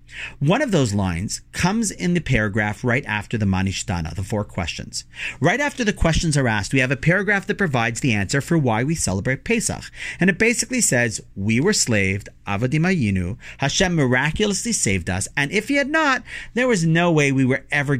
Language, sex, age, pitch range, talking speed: English, male, 40-59, 105-175 Hz, 195 wpm